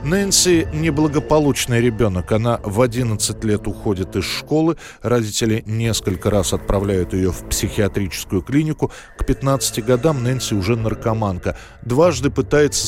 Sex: male